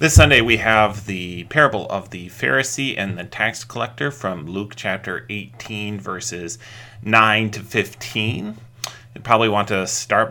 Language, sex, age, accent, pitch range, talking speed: English, male, 30-49, American, 105-125 Hz, 150 wpm